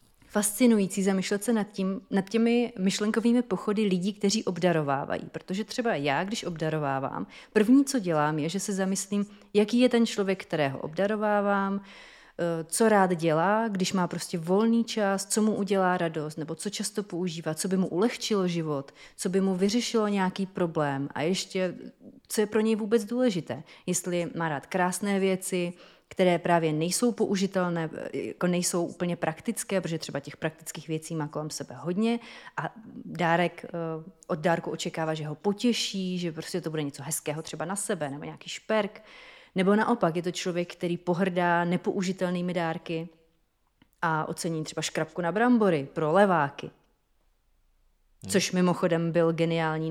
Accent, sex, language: native, female, Czech